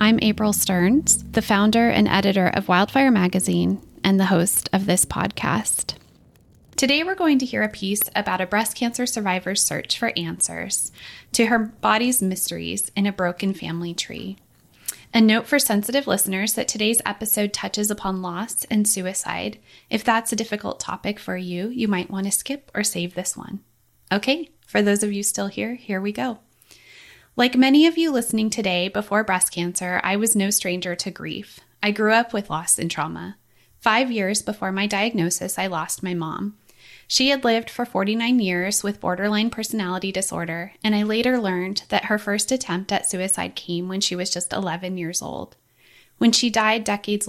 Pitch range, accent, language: 185-225 Hz, American, English